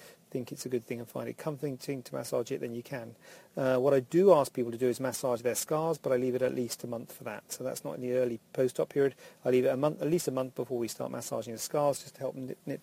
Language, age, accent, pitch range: English, 40-59, British, 125-150 Hz